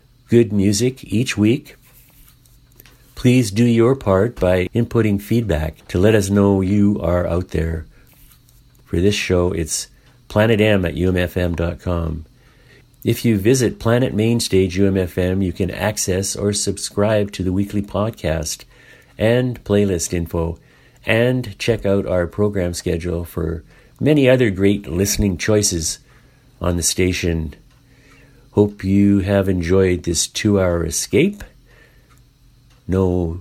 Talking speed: 120 wpm